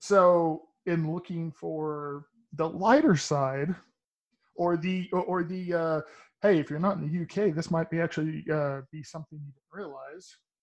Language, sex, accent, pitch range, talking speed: English, male, American, 150-180 Hz, 170 wpm